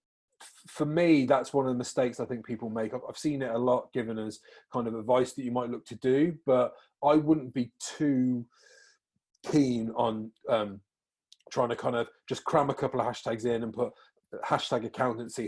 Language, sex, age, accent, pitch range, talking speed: English, male, 30-49, British, 115-135 Hz, 195 wpm